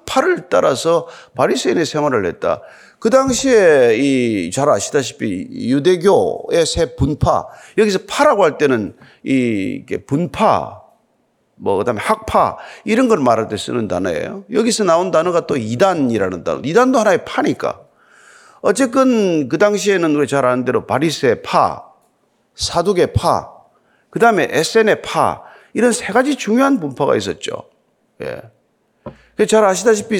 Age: 40-59